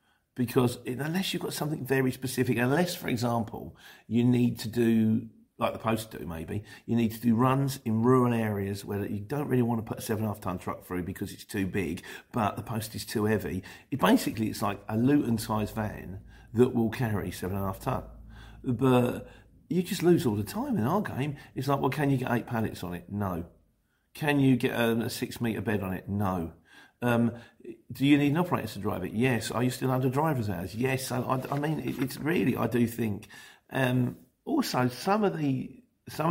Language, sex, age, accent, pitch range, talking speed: English, male, 50-69, British, 105-125 Hz, 215 wpm